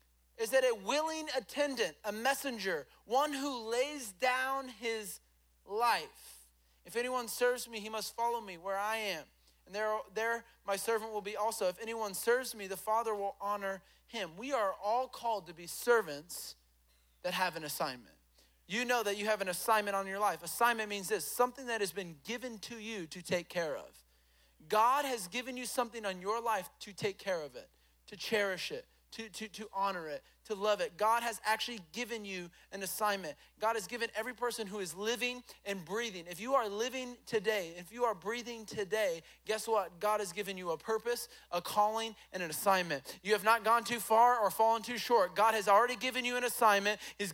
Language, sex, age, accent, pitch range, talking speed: English, male, 30-49, American, 200-245 Hz, 200 wpm